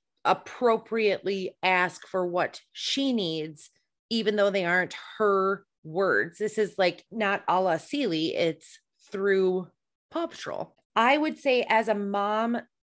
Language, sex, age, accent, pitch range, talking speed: English, female, 30-49, American, 190-245 Hz, 135 wpm